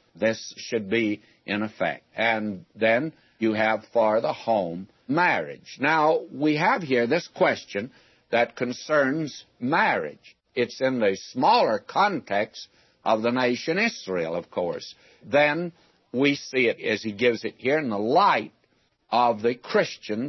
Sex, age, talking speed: male, 60-79, 140 wpm